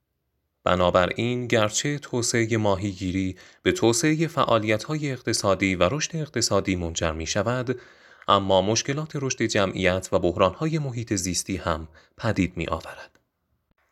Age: 30-49